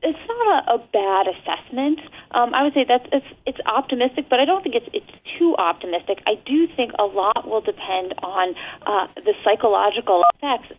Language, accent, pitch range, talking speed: English, American, 205-300 Hz, 190 wpm